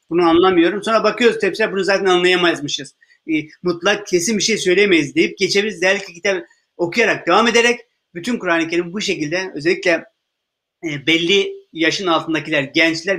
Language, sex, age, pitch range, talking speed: Turkish, male, 30-49, 160-200 Hz, 135 wpm